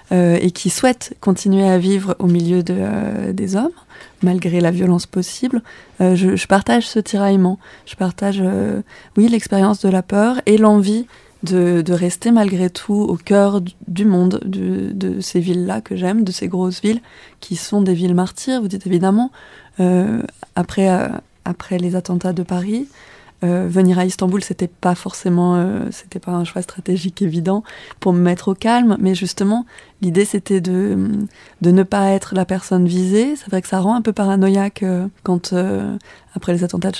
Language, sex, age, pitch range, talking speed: French, female, 20-39, 180-205 Hz, 185 wpm